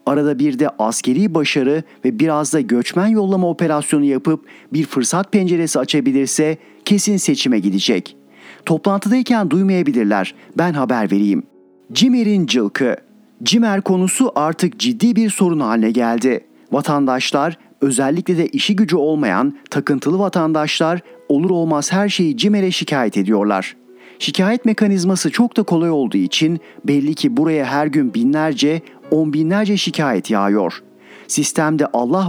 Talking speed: 125 wpm